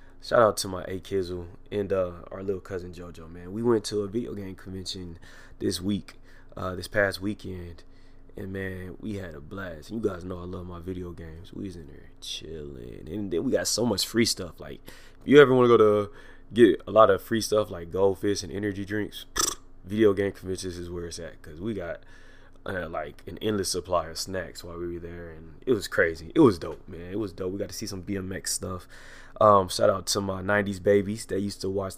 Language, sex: English, male